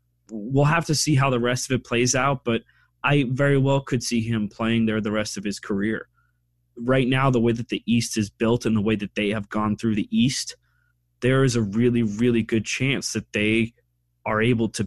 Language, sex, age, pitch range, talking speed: English, male, 20-39, 105-120 Hz, 225 wpm